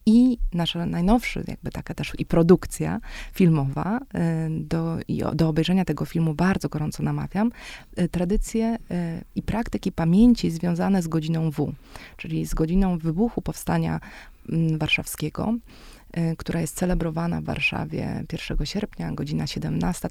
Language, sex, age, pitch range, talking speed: Polish, female, 20-39, 165-205 Hz, 125 wpm